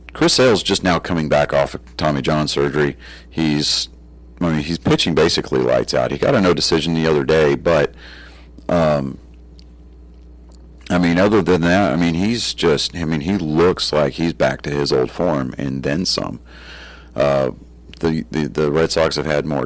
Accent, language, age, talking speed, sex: American, English, 40-59, 185 wpm, male